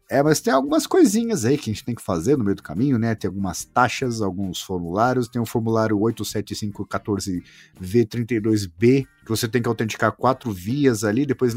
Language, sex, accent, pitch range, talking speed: Portuguese, male, Brazilian, 105-140 Hz, 180 wpm